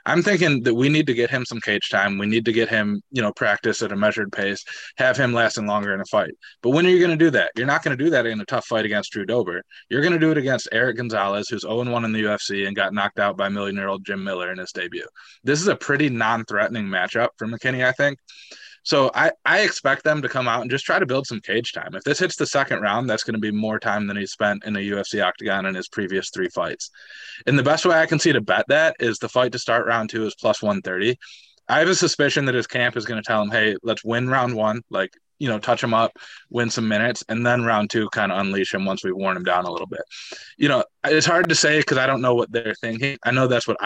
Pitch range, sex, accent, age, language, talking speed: 105-135 Hz, male, American, 20-39, English, 280 wpm